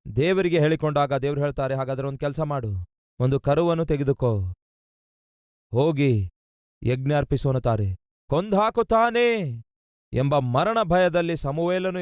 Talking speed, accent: 100 wpm, native